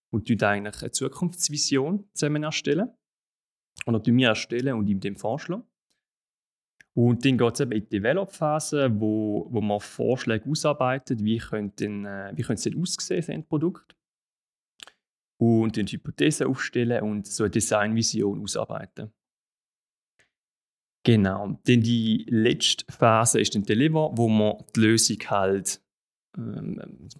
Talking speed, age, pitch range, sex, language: 135 wpm, 30-49, 110-140 Hz, male, German